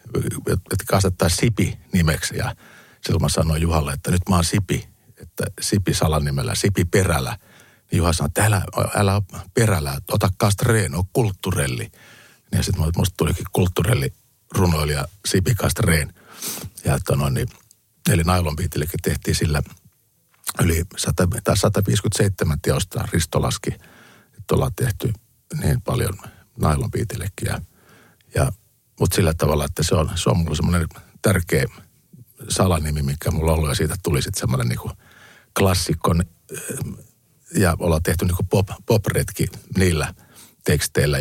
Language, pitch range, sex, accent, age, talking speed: Finnish, 80-100 Hz, male, native, 50-69, 125 wpm